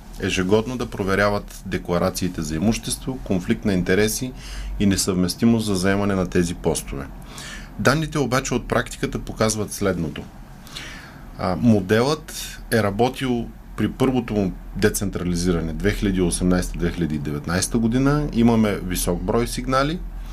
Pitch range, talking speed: 95-130 Hz, 100 wpm